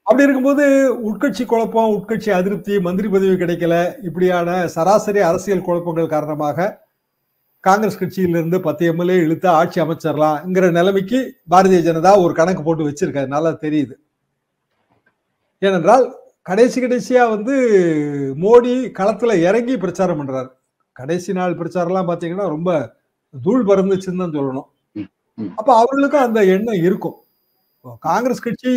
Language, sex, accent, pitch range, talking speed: Tamil, male, native, 165-225 Hz, 115 wpm